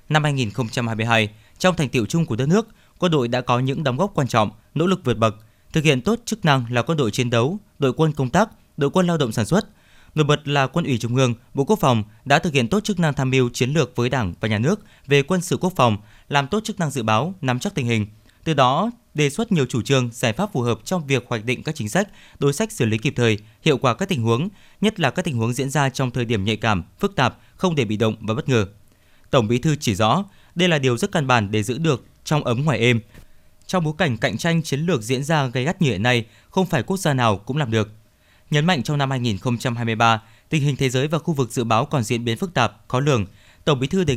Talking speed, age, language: 265 wpm, 20-39, Vietnamese